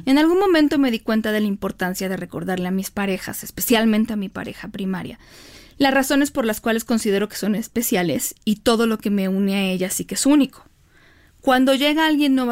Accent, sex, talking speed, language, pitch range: Mexican, female, 210 wpm, Spanish, 200-260 Hz